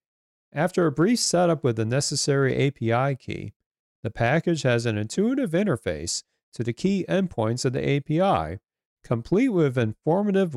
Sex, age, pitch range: male, 40-59, 110-170 Hz